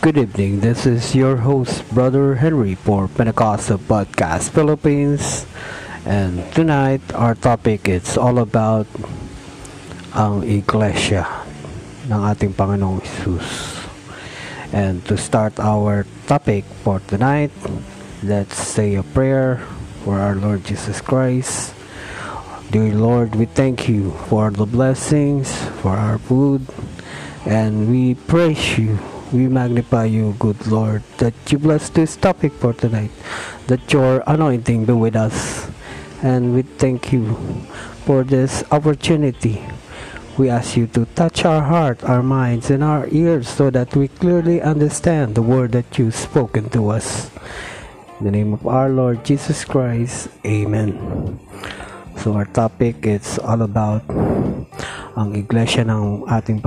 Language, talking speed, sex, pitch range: Filipino, 130 wpm, male, 105-135 Hz